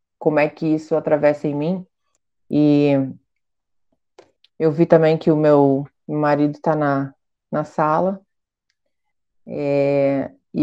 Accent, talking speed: Brazilian, 115 wpm